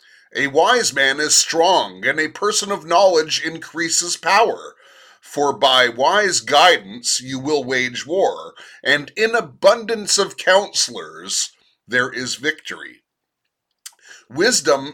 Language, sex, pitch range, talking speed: English, male, 145-195 Hz, 115 wpm